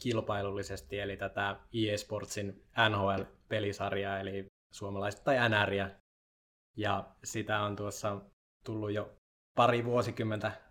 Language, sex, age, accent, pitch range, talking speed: Finnish, male, 20-39, native, 100-110 Hz, 95 wpm